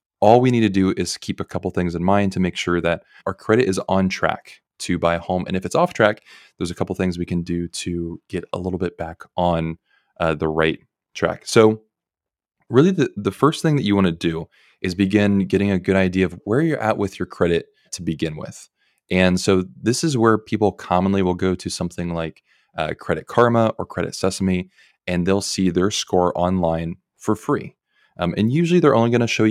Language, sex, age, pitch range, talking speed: English, male, 20-39, 90-110 Hz, 220 wpm